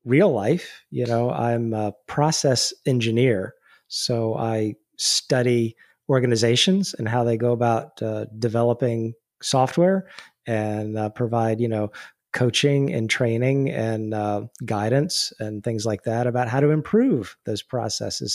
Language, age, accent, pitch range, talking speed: English, 30-49, American, 120-145 Hz, 135 wpm